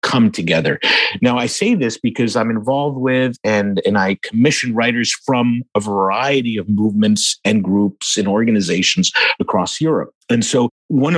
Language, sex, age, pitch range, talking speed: English, male, 50-69, 110-150 Hz, 155 wpm